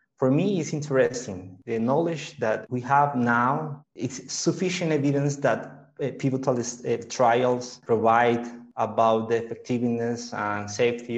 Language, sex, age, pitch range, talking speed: English, male, 30-49, 115-135 Hz, 120 wpm